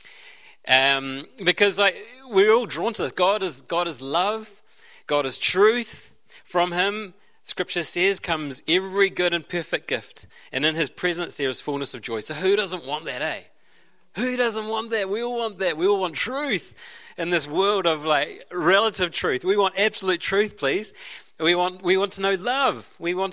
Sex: male